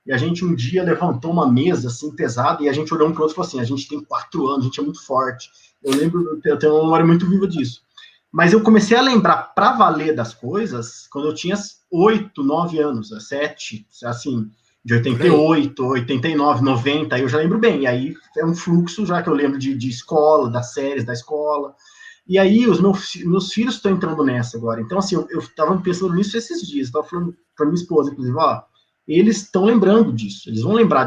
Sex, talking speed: male, 220 wpm